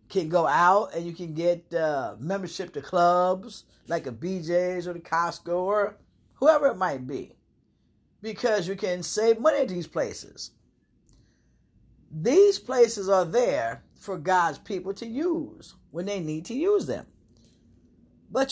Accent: American